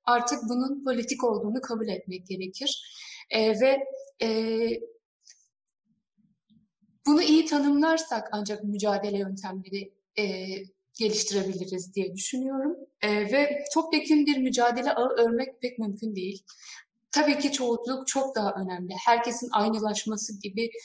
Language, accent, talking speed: Turkish, native, 115 wpm